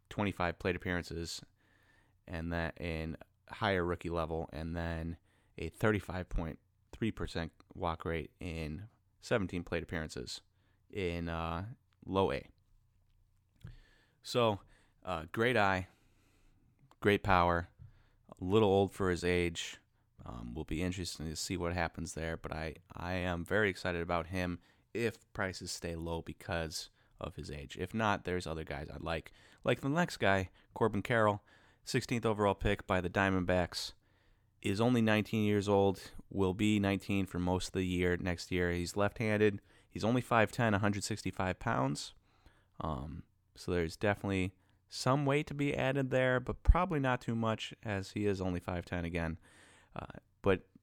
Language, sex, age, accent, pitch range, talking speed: English, male, 30-49, American, 85-105 Hz, 145 wpm